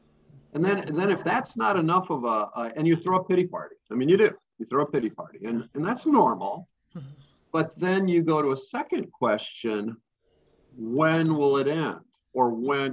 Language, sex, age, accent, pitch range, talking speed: English, male, 50-69, American, 135-180 Hz, 205 wpm